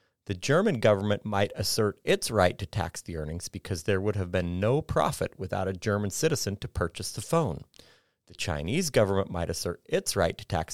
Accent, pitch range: American, 95-120 Hz